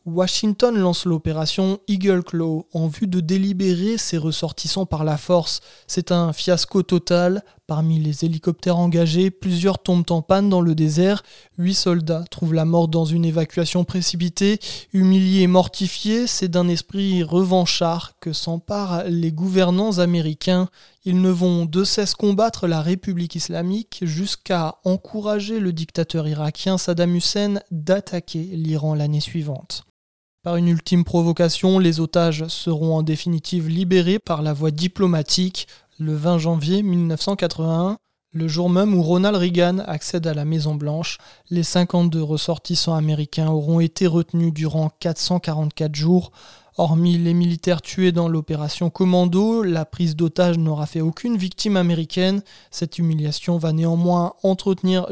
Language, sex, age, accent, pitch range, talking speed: French, male, 20-39, French, 160-185 Hz, 140 wpm